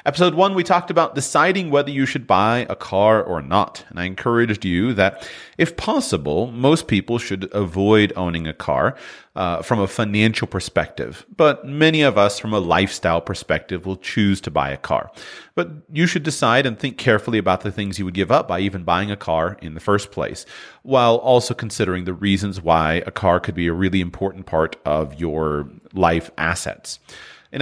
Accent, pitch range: American, 95-130 Hz